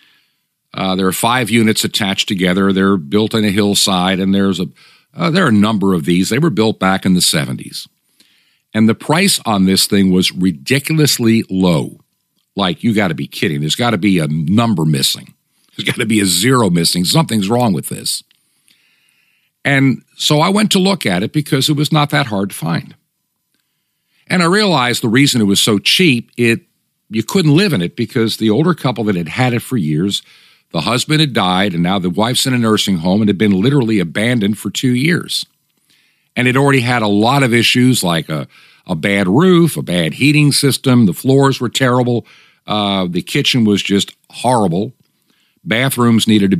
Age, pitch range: 50-69, 100-140 Hz